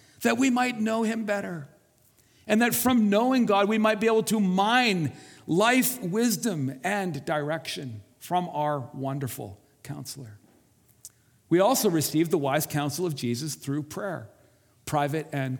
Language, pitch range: English, 135-200 Hz